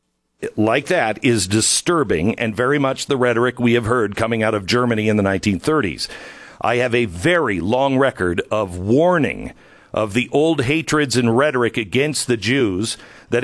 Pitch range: 115-150 Hz